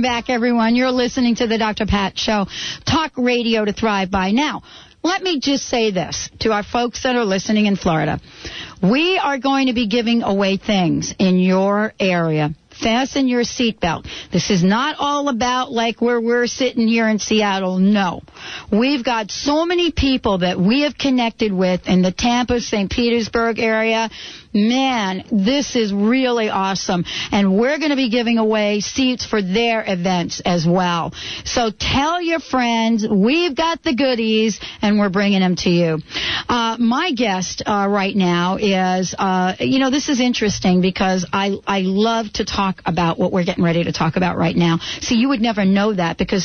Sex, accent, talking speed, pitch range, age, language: female, American, 180 wpm, 190-245 Hz, 60-79, English